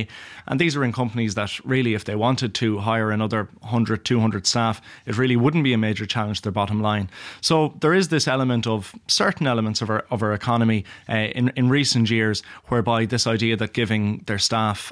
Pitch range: 110-125 Hz